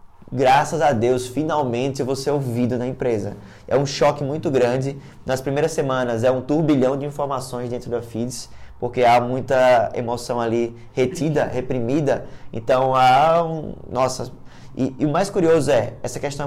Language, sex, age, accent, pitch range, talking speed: Portuguese, male, 20-39, Brazilian, 120-145 Hz, 165 wpm